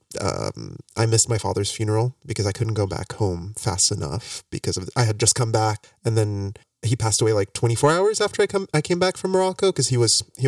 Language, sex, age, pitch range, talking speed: English, male, 30-49, 105-125 Hz, 235 wpm